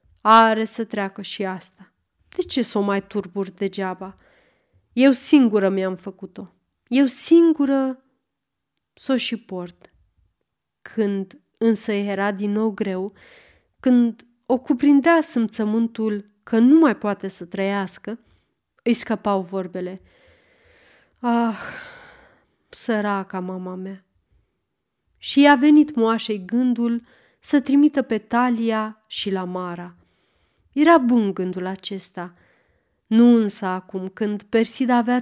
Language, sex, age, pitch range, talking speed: Romanian, female, 30-49, 195-245 Hz, 110 wpm